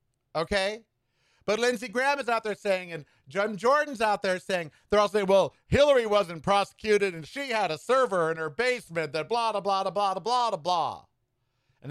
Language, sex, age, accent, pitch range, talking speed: English, male, 50-69, American, 145-235 Hz, 190 wpm